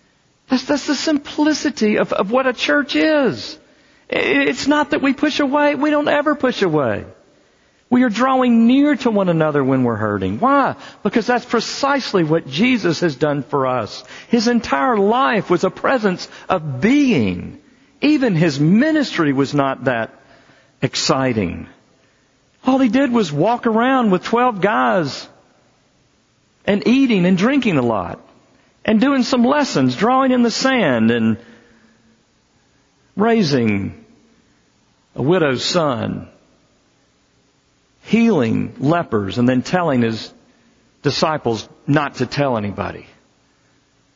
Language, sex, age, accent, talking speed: English, male, 50-69, American, 130 wpm